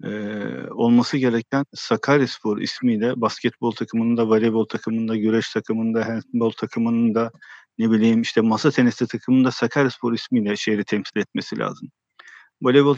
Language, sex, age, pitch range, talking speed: Turkish, male, 50-69, 110-130 Hz, 115 wpm